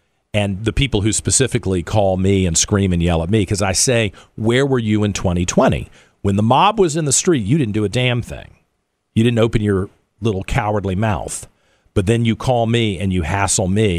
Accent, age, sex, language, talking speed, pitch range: American, 50-69, male, English, 215 wpm, 85-110 Hz